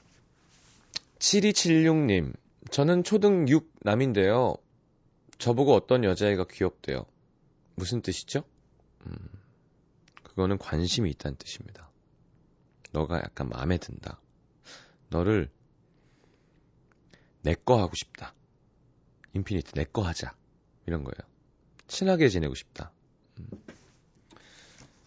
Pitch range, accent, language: 85-145 Hz, native, Korean